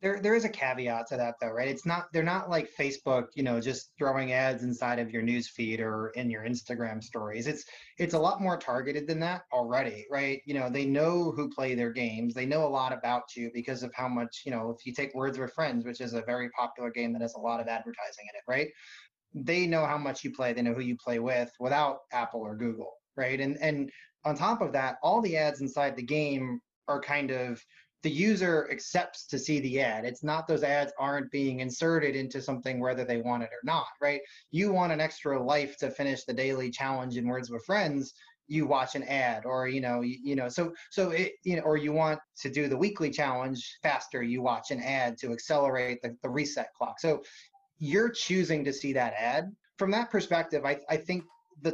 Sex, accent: male, American